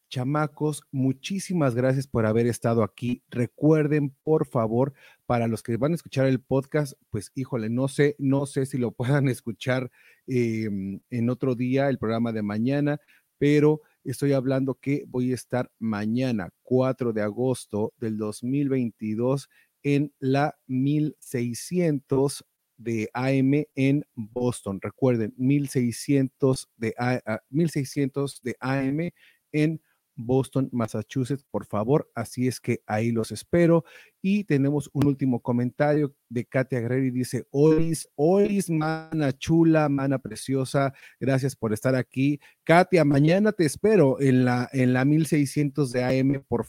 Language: Spanish